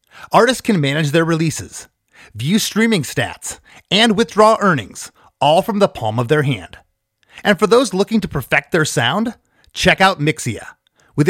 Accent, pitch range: American, 145-215 Hz